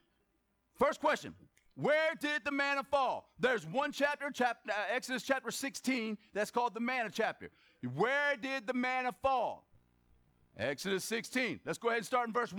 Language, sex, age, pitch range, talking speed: Hungarian, male, 40-59, 210-285 Hz, 160 wpm